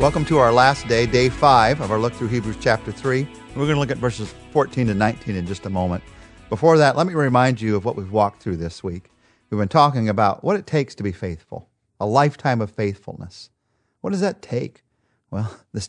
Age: 40-59